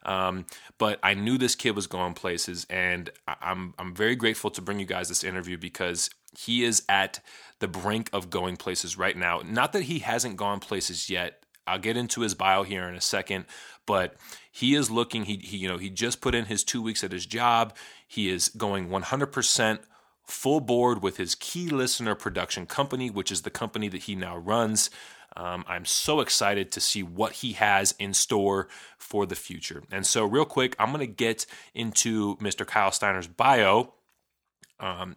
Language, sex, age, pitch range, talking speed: English, male, 30-49, 95-120 Hz, 205 wpm